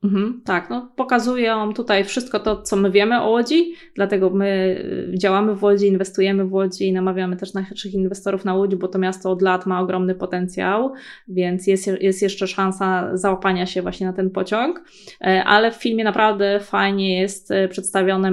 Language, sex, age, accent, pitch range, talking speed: Polish, female, 20-39, native, 185-205 Hz, 170 wpm